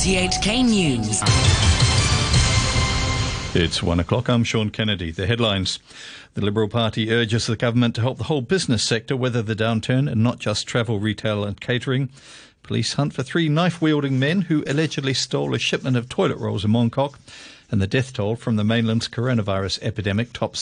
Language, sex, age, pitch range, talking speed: English, male, 50-69, 105-135 Hz, 170 wpm